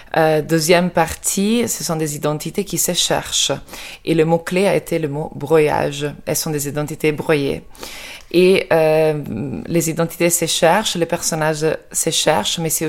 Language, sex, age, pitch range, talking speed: French, female, 20-39, 145-165 Hz, 175 wpm